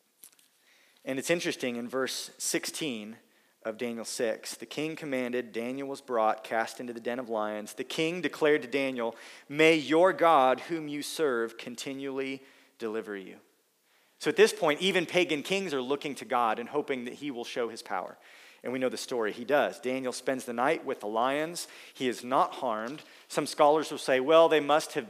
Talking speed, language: 190 wpm, English